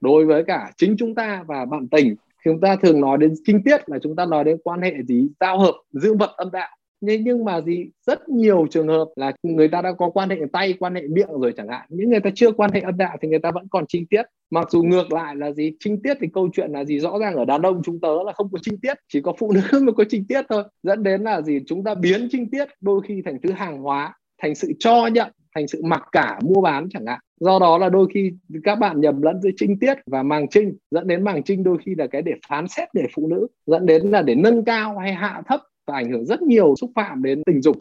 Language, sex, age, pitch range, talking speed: Vietnamese, male, 20-39, 155-210 Hz, 280 wpm